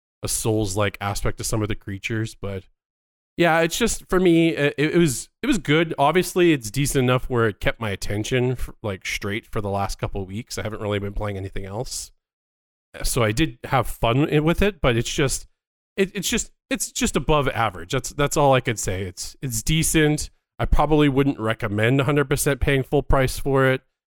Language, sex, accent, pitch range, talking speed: English, male, American, 100-135 Hz, 205 wpm